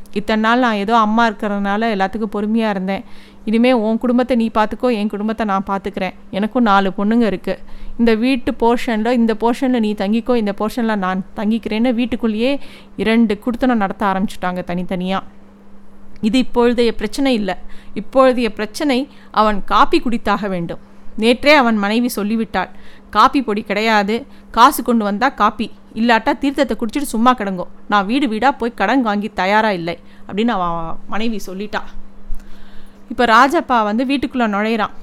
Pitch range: 200-240 Hz